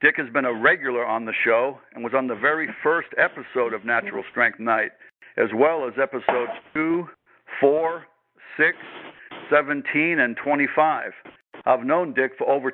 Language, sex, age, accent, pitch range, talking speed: English, male, 60-79, American, 125-150 Hz, 160 wpm